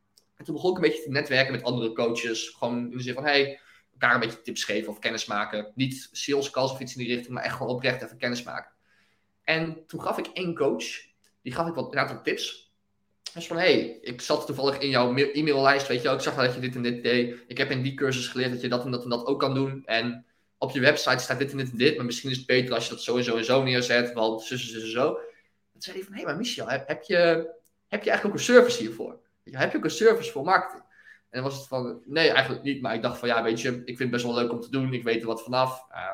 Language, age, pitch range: Dutch, 20-39, 120-150 Hz